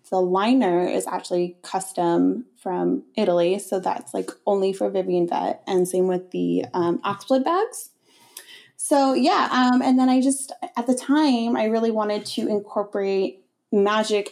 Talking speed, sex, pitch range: 155 wpm, female, 185-235 Hz